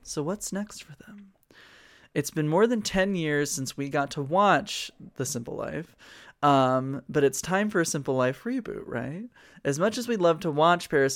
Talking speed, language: 200 wpm, English